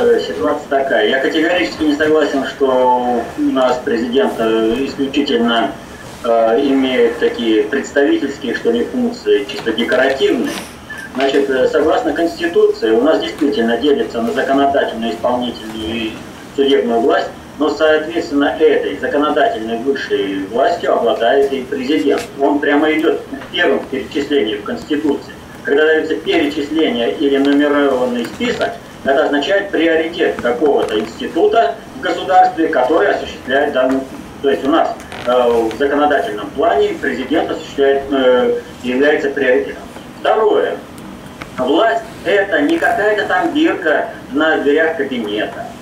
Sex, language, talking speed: male, Russian, 120 wpm